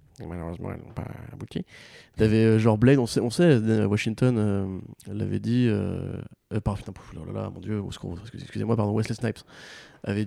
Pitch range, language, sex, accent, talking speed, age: 105-125 Hz, French, male, French, 175 wpm, 20-39